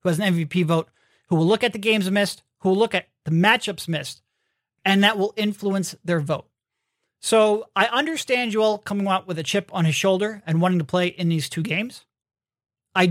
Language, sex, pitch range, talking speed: English, male, 170-215 Hz, 205 wpm